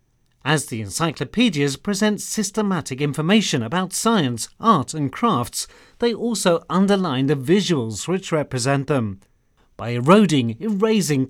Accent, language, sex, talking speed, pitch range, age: British, Turkish, male, 115 wpm, 135-200 Hz, 40-59